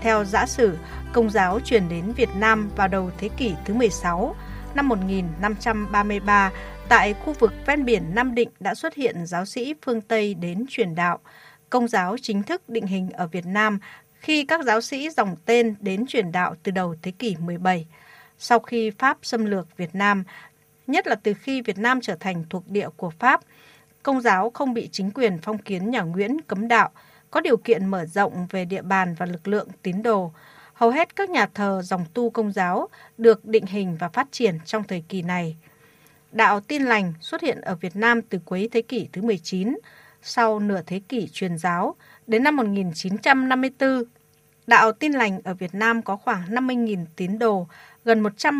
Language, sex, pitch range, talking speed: Vietnamese, female, 185-240 Hz, 195 wpm